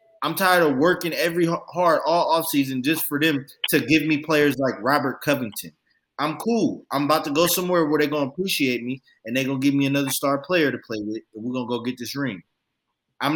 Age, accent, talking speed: 20-39, American, 240 wpm